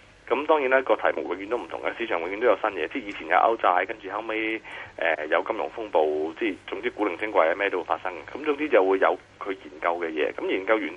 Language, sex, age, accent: Chinese, male, 30-49, native